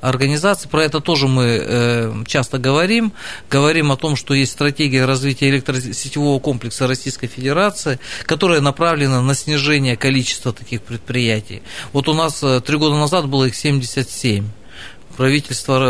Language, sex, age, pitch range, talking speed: Russian, male, 40-59, 120-145 Hz, 135 wpm